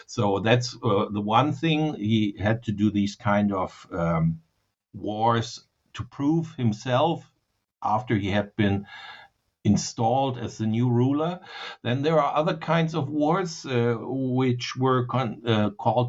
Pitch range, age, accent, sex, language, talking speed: 105-130 Hz, 60-79, German, male, English, 145 wpm